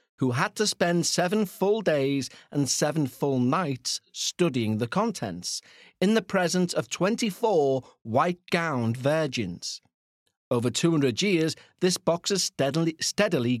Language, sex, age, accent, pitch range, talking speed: English, male, 40-59, British, 130-185 Hz, 125 wpm